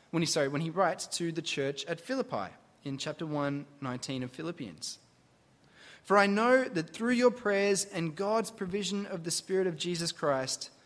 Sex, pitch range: male, 135-210 Hz